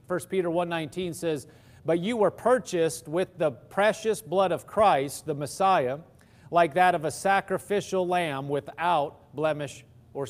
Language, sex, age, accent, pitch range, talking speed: English, male, 40-59, American, 125-180 Hz, 145 wpm